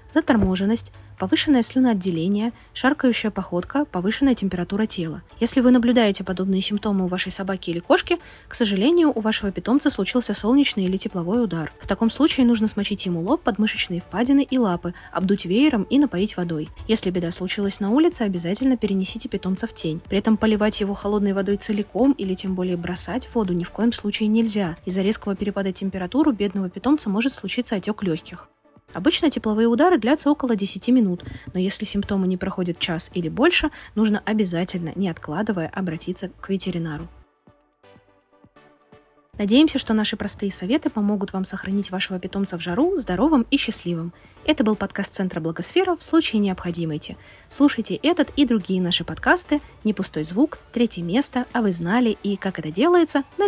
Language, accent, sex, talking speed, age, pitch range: Russian, native, female, 165 wpm, 20-39, 180-240 Hz